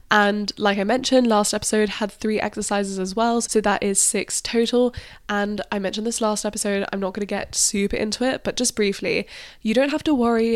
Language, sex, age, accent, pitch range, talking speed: English, female, 10-29, British, 195-220 Hz, 215 wpm